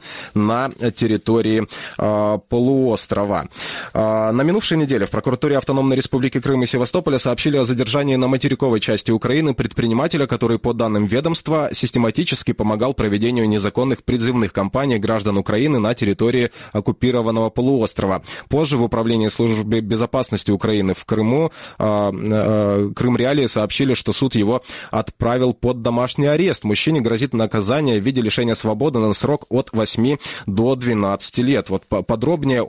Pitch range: 110-135 Hz